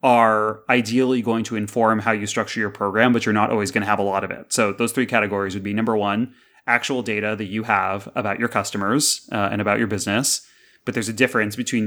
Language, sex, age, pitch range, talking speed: English, male, 30-49, 105-120 Hz, 240 wpm